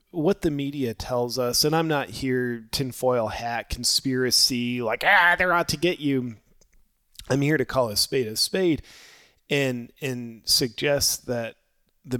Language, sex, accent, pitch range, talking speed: English, male, American, 120-145 Hz, 155 wpm